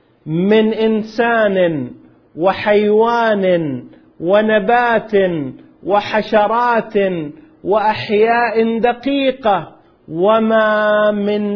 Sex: male